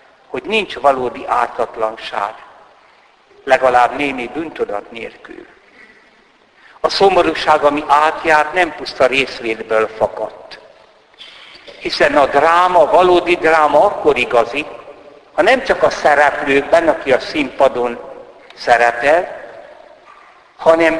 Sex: male